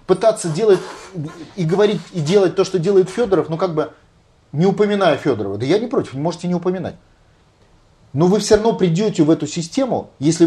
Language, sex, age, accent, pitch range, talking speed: Russian, male, 30-49, native, 140-190 Hz, 185 wpm